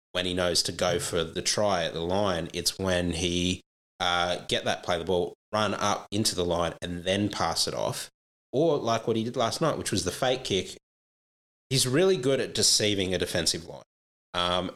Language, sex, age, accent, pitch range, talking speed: English, male, 20-39, Australian, 85-110 Hz, 205 wpm